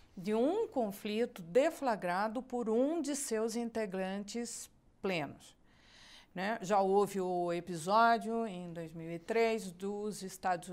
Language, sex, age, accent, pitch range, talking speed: Portuguese, female, 40-59, Brazilian, 185-230 Hz, 105 wpm